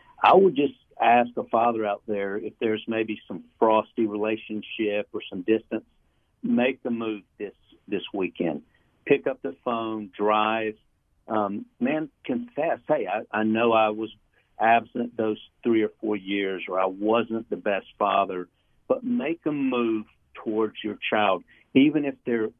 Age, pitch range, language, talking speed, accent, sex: 60-79, 105-120 Hz, English, 155 wpm, American, male